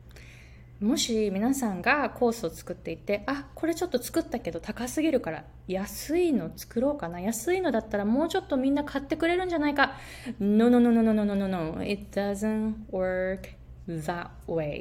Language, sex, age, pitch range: Japanese, female, 20-39, 185-310 Hz